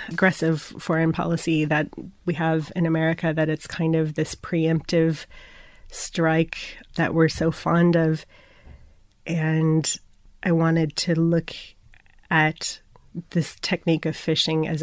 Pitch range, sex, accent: 155-165 Hz, female, American